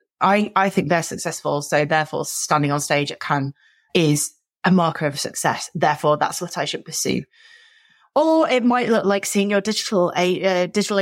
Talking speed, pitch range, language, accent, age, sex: 185 wpm, 155-200 Hz, English, British, 30-49, female